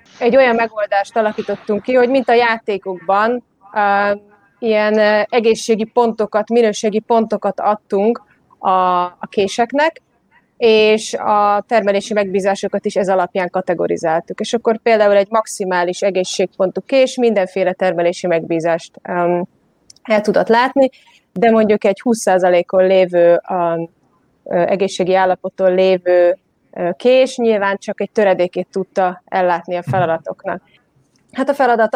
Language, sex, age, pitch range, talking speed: Hungarian, female, 30-49, 190-230 Hz, 110 wpm